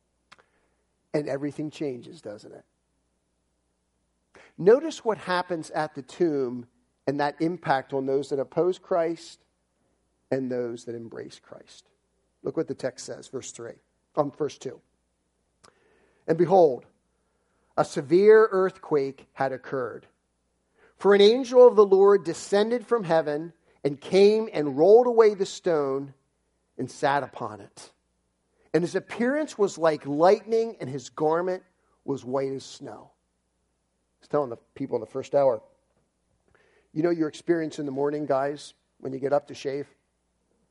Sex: male